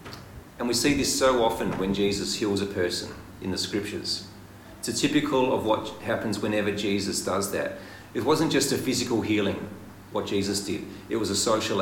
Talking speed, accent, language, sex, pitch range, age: 190 wpm, Australian, English, male, 100-115 Hz, 40-59